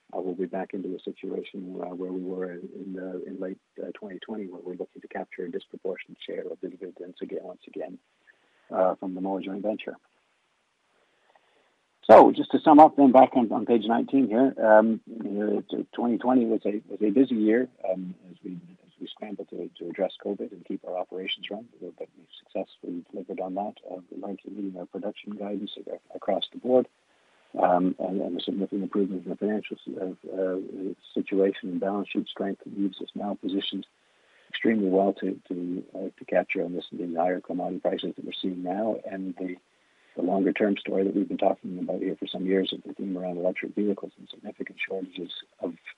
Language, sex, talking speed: English, male, 195 wpm